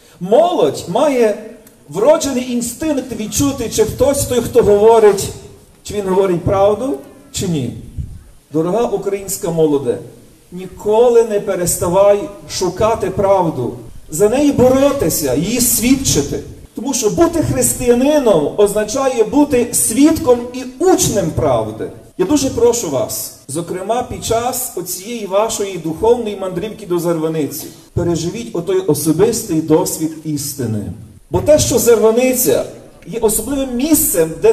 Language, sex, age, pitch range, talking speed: Ukrainian, male, 40-59, 160-240 Hz, 115 wpm